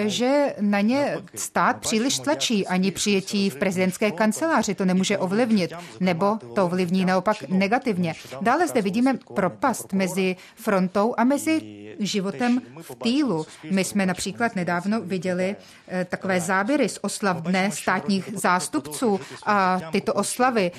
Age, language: 30-49, Czech